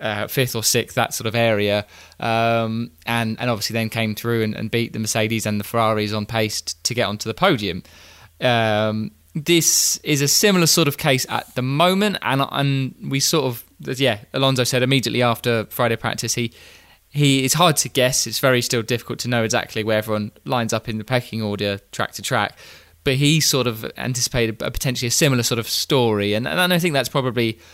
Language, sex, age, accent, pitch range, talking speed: English, male, 20-39, British, 110-130 Hz, 210 wpm